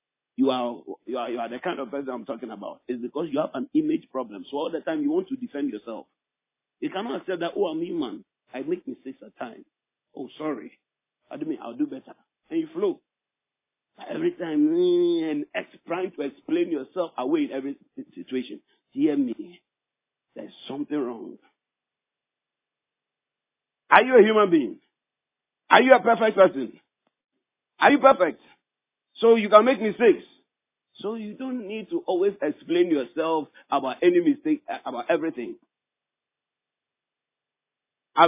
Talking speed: 155 wpm